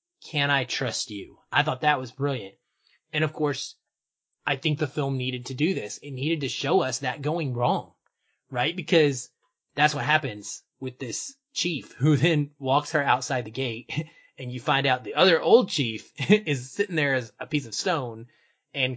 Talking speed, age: 190 wpm, 20-39